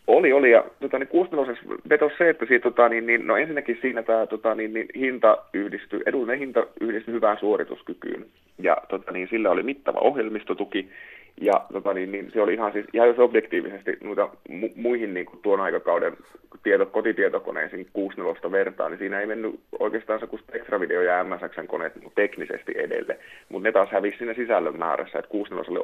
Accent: native